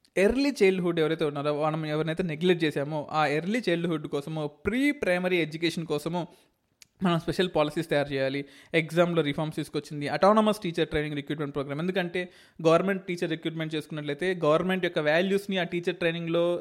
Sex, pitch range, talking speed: male, 150-180 Hz, 145 wpm